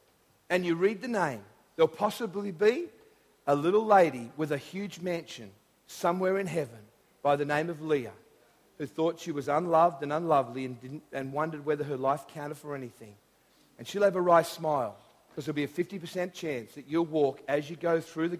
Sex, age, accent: male, 50-69, Australian